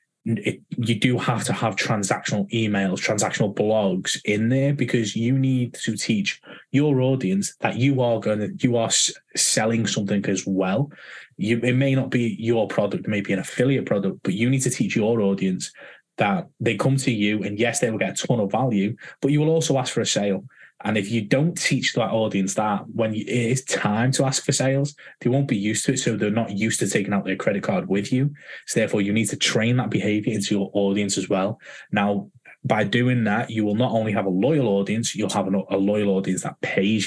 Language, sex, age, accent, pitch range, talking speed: English, male, 20-39, British, 100-125 Hz, 225 wpm